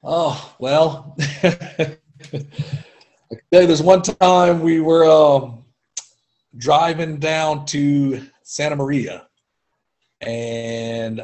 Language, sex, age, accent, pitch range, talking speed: English, male, 30-49, American, 120-160 Hz, 95 wpm